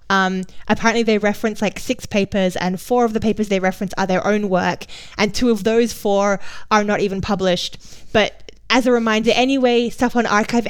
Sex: female